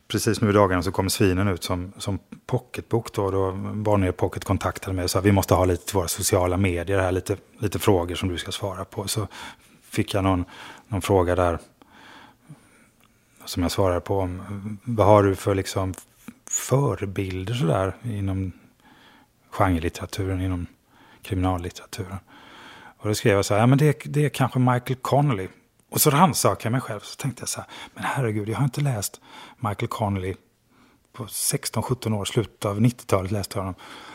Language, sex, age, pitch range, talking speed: English, male, 30-49, 95-120 Hz, 180 wpm